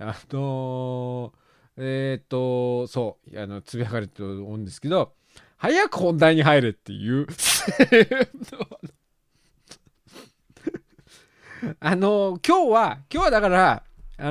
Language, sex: Japanese, male